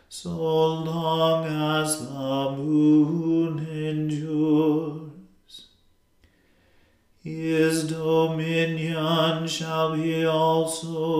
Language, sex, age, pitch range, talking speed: English, male, 40-59, 155-160 Hz, 60 wpm